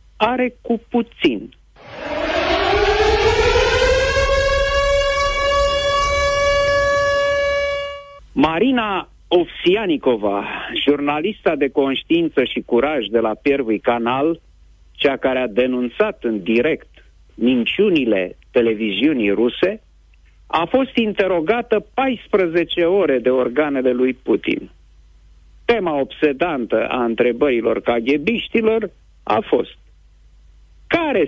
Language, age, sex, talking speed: Romanian, 50-69, male, 75 wpm